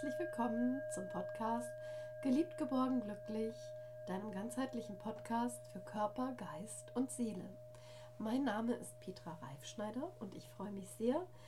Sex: female